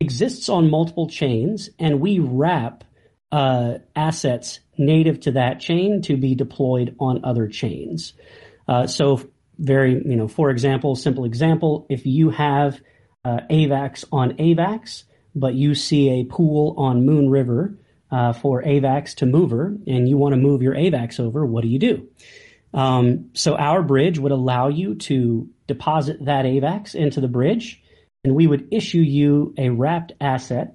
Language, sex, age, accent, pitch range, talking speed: English, male, 40-59, American, 125-160 Hz, 160 wpm